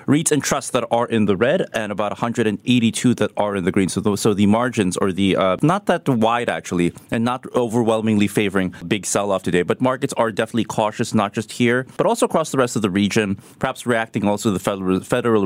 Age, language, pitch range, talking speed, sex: 30-49, English, 95-120 Hz, 220 wpm, male